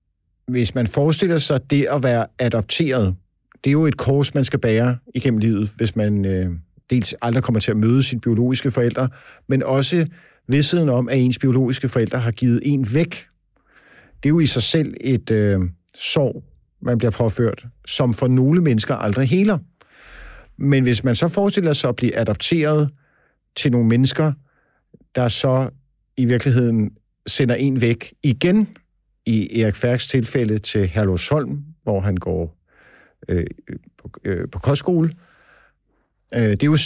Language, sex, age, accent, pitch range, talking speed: Danish, male, 50-69, native, 110-140 Hz, 160 wpm